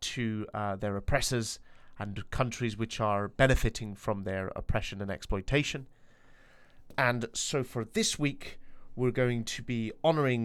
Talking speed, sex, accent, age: 140 wpm, male, British, 30-49